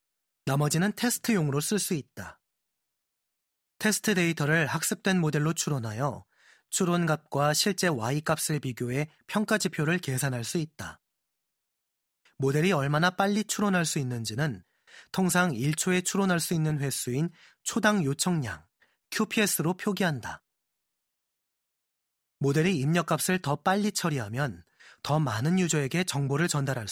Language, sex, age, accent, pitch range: Korean, male, 30-49, native, 135-180 Hz